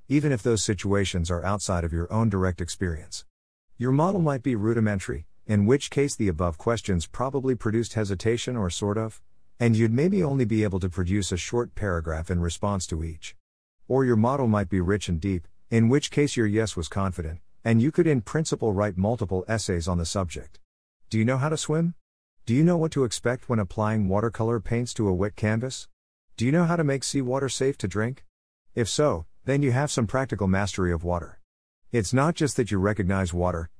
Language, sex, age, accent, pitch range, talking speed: English, male, 50-69, American, 90-120 Hz, 205 wpm